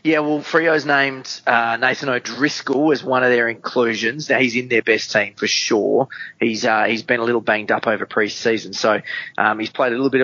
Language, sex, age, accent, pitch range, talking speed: English, male, 20-39, Australian, 110-135 Hz, 215 wpm